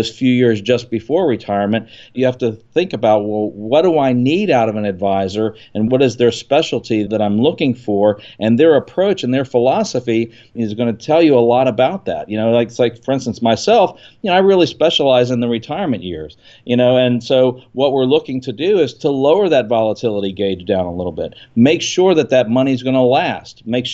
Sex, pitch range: male, 110-130 Hz